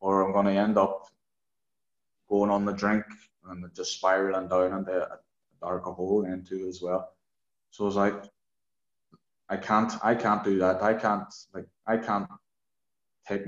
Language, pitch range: English, 95-115 Hz